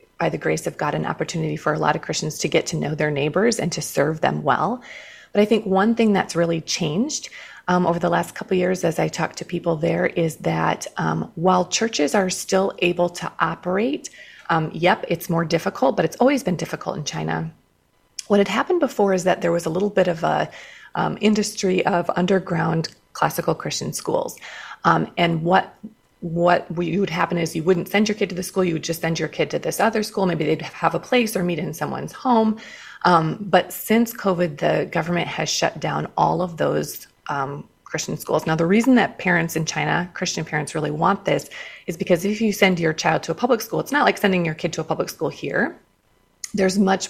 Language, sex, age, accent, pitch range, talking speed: English, female, 30-49, American, 165-200 Hz, 220 wpm